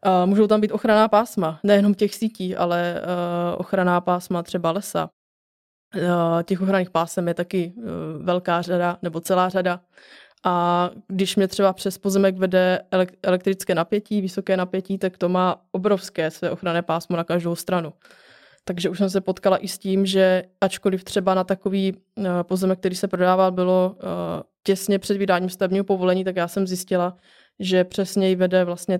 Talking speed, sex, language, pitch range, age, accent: 155 wpm, female, Czech, 180-195 Hz, 20-39, native